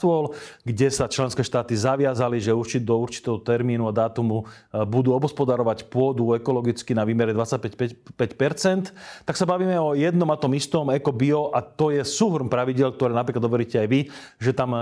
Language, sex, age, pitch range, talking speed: Slovak, male, 30-49, 115-140 Hz, 160 wpm